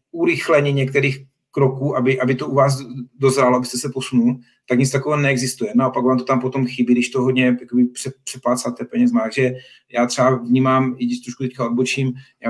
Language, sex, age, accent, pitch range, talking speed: Czech, male, 40-59, native, 125-145 Hz, 180 wpm